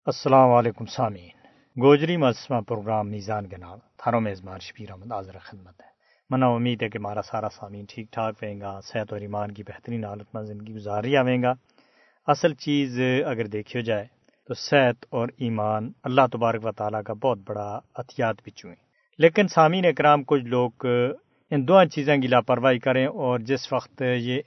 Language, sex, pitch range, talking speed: Urdu, male, 115-145 Hz, 175 wpm